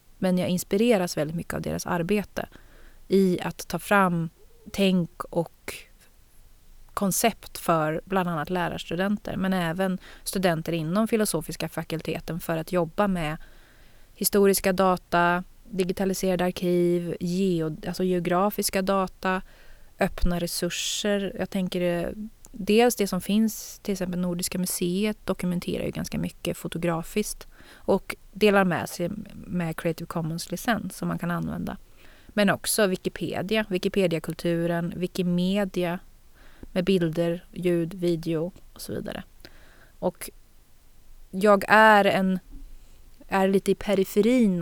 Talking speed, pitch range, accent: 115 wpm, 170-200 Hz, native